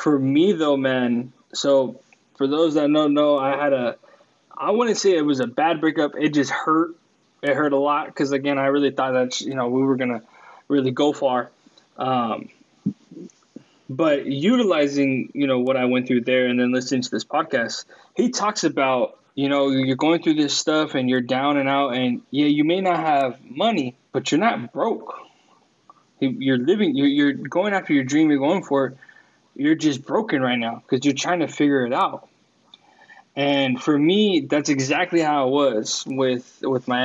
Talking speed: 190 wpm